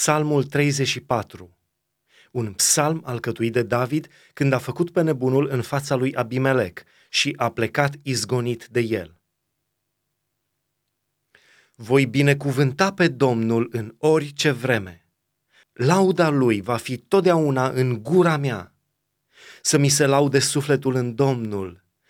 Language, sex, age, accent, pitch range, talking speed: Romanian, male, 30-49, native, 120-150 Hz, 120 wpm